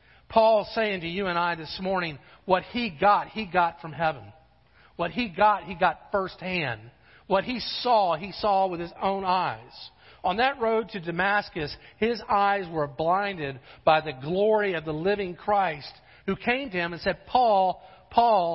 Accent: American